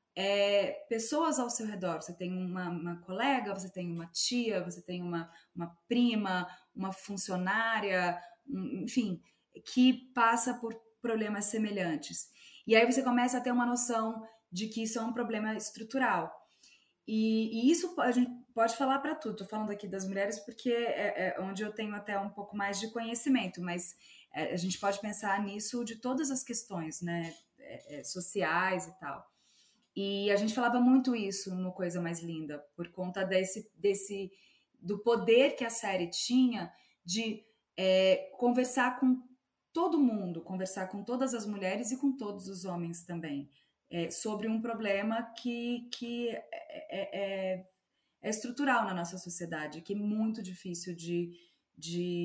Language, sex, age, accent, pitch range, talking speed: Portuguese, female, 20-39, Brazilian, 180-235 Hz, 155 wpm